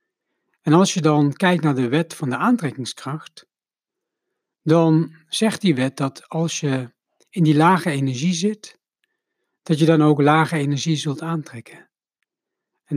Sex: male